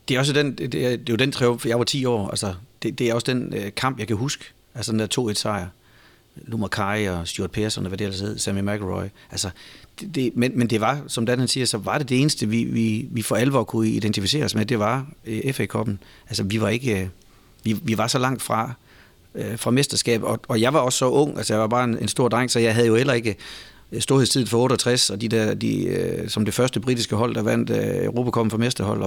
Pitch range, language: 110-130 Hz, Danish